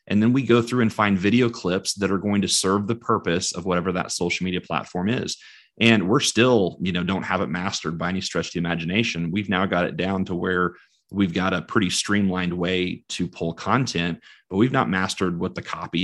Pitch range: 90-105 Hz